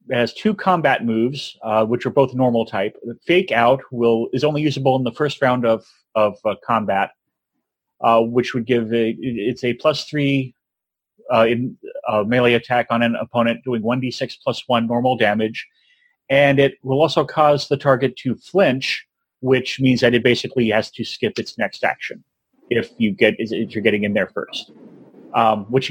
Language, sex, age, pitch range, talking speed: English, male, 30-49, 115-140 Hz, 185 wpm